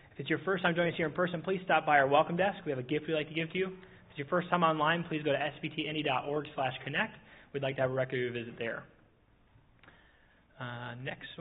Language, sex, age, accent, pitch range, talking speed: English, male, 20-39, American, 135-170 Hz, 260 wpm